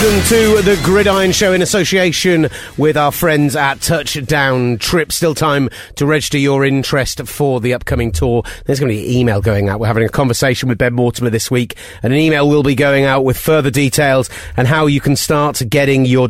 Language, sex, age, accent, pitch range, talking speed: English, male, 30-49, British, 120-150 Hz, 210 wpm